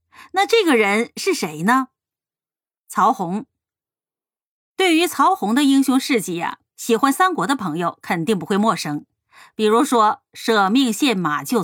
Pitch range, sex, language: 195-295 Hz, female, Chinese